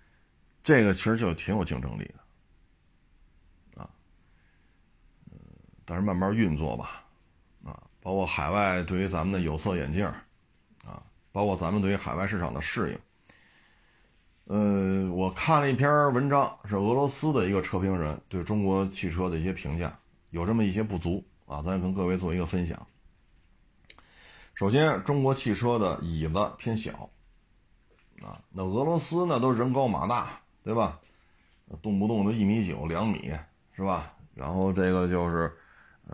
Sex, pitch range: male, 85-110 Hz